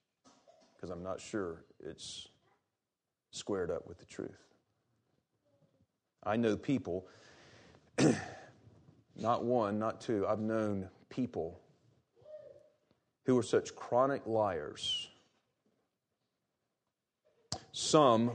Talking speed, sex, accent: 85 wpm, male, American